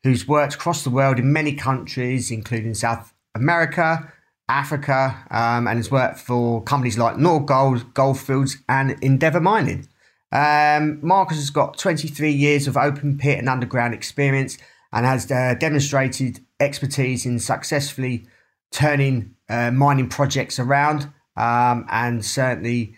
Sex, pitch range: male, 120-145 Hz